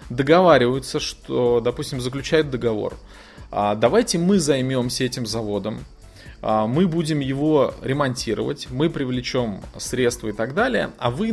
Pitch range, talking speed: 110-155 Hz, 115 wpm